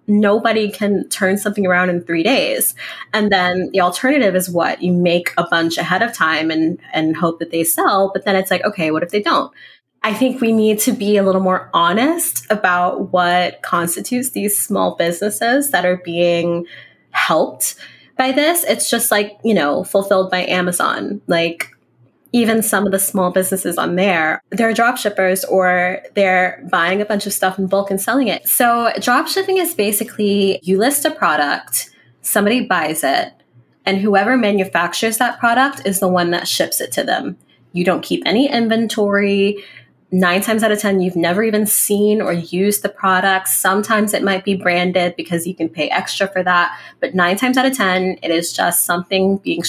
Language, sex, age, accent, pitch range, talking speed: English, female, 20-39, American, 180-215 Hz, 185 wpm